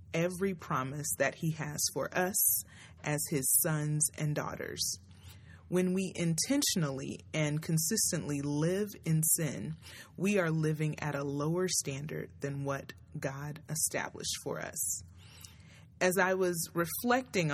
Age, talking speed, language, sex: 30-49, 125 wpm, English, female